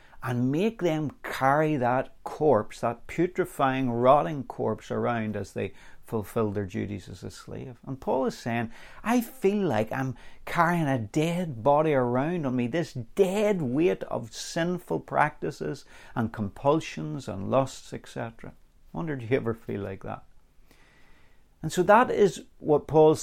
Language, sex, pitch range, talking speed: English, male, 115-155 Hz, 150 wpm